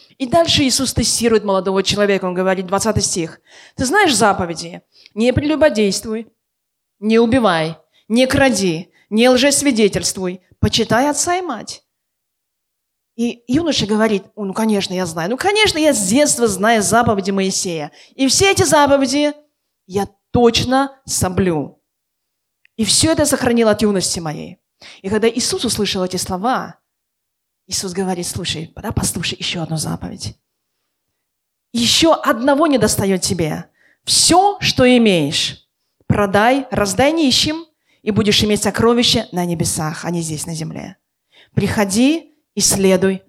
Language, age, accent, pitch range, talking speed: Russian, 20-39, native, 195-275 Hz, 130 wpm